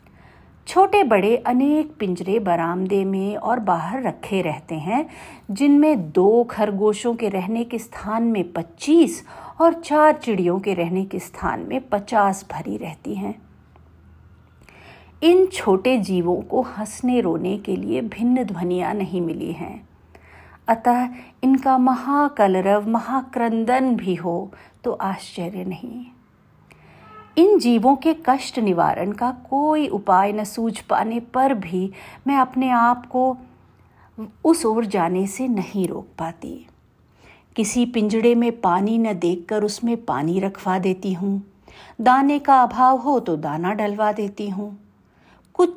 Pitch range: 190-260 Hz